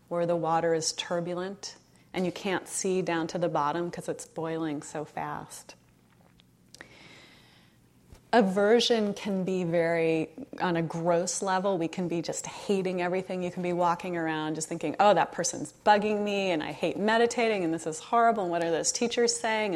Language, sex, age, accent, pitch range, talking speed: English, female, 30-49, American, 170-230 Hz, 175 wpm